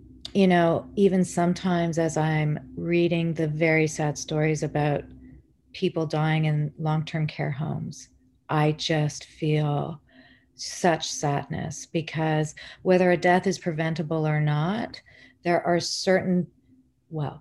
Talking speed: 120 wpm